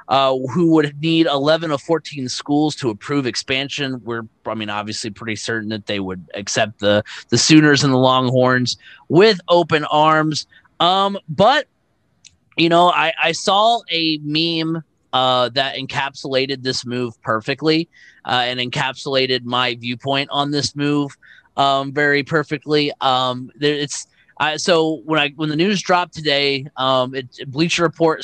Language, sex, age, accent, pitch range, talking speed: English, male, 30-49, American, 130-160 Hz, 145 wpm